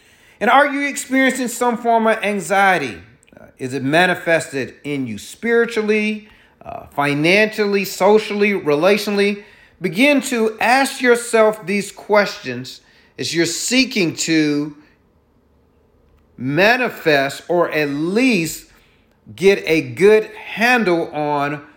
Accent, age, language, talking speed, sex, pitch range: American, 40-59, English, 105 wpm, male, 150-215 Hz